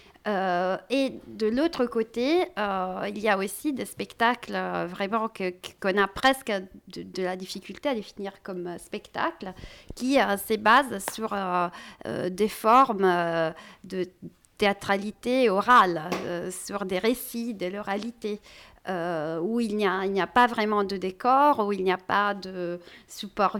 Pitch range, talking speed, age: 185-235 Hz, 165 wpm, 40-59